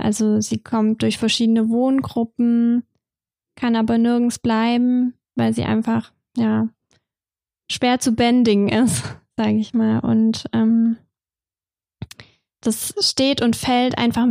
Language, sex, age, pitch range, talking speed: German, female, 10-29, 225-250 Hz, 115 wpm